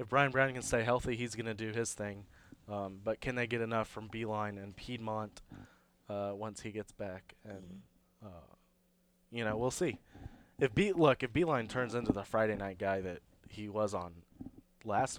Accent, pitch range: American, 95-120 Hz